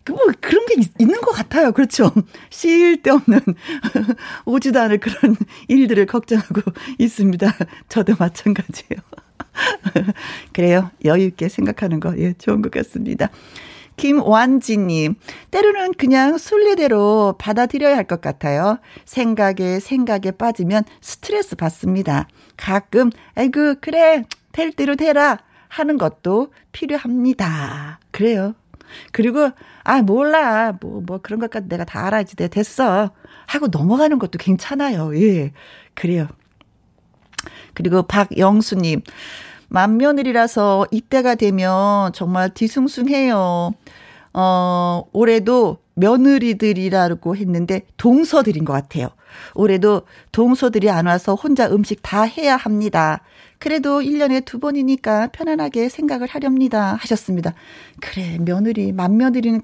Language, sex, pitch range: Korean, female, 190-265 Hz